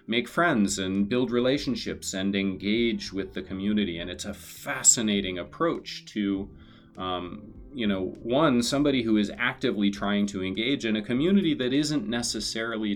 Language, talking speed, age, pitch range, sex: English, 155 wpm, 30-49, 90-110 Hz, male